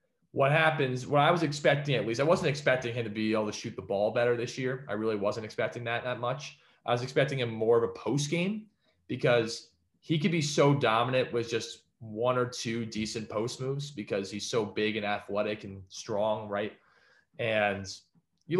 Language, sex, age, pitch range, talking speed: English, male, 20-39, 105-135 Hz, 200 wpm